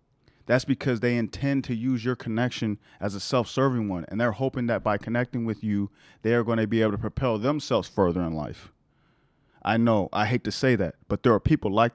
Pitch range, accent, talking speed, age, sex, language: 110-135 Hz, American, 220 wpm, 40-59, male, English